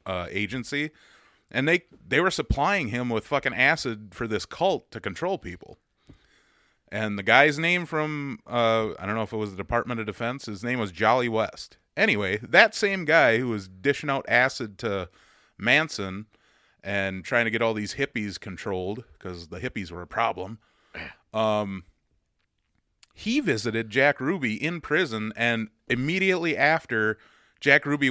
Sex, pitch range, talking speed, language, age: male, 95-120 Hz, 160 wpm, English, 30-49